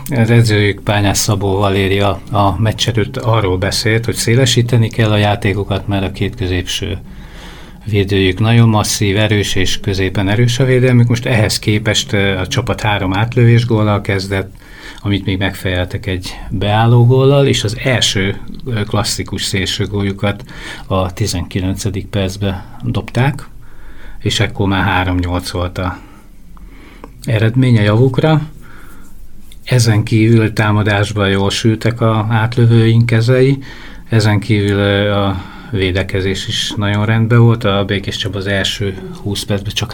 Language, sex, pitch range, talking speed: Hungarian, male, 95-115 Hz, 125 wpm